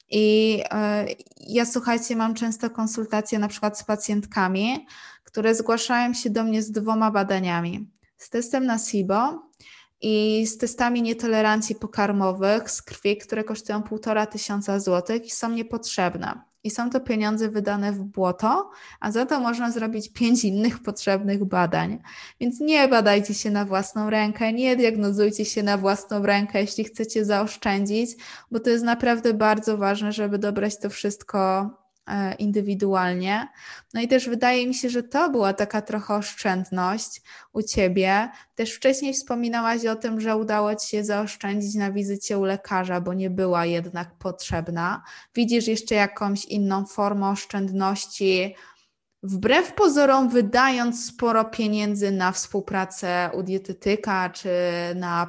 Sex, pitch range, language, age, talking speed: female, 195-230 Hz, Polish, 20-39, 140 wpm